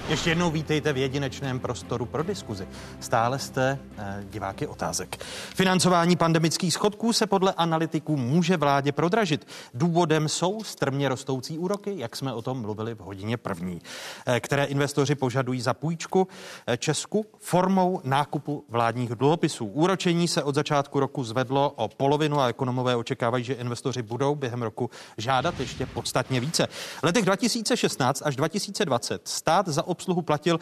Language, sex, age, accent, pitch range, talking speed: Czech, male, 30-49, native, 125-165 Hz, 125 wpm